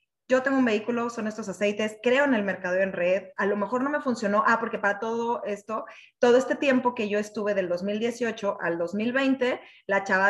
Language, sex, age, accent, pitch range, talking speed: Spanish, female, 20-39, Mexican, 200-255 Hz, 210 wpm